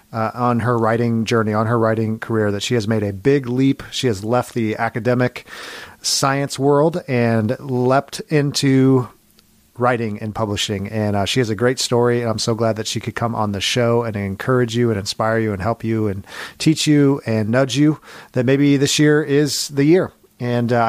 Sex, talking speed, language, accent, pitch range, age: male, 205 wpm, English, American, 115-140 Hz, 40-59